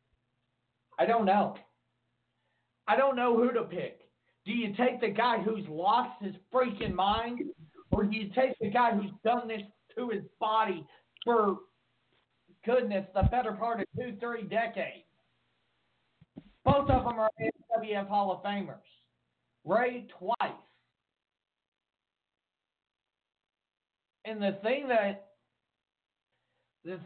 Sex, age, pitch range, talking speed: male, 50-69, 180-230 Hz, 120 wpm